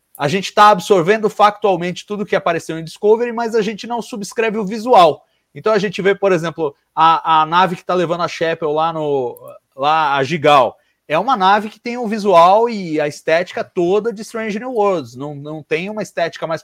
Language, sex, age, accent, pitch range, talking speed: Portuguese, male, 30-49, Brazilian, 155-215 Hz, 200 wpm